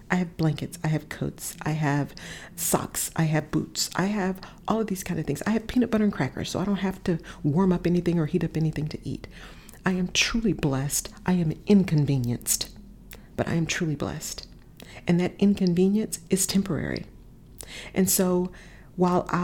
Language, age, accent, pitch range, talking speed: English, 40-59, American, 155-195 Hz, 185 wpm